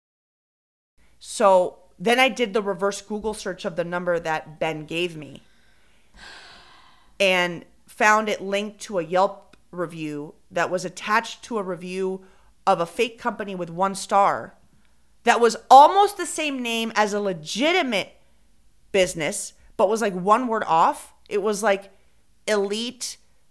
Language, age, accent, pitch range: English, 30-49, American, 185-235 Hz